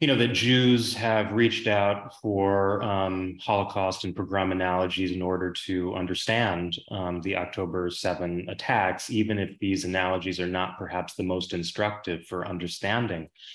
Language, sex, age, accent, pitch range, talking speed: English, male, 30-49, American, 90-110 Hz, 150 wpm